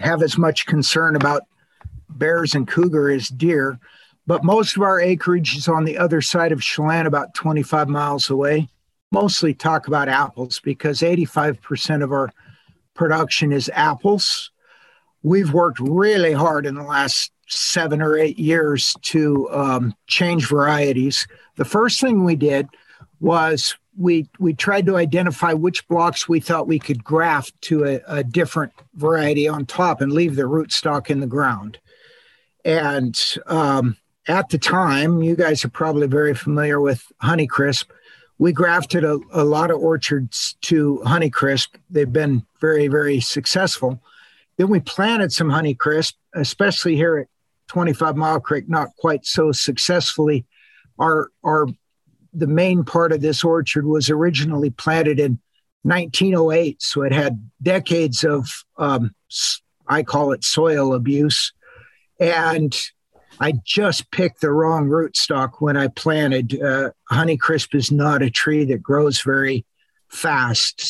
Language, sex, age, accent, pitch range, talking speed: English, male, 50-69, American, 140-165 Hz, 145 wpm